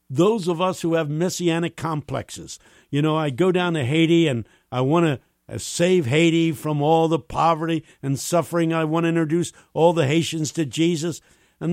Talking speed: 185 wpm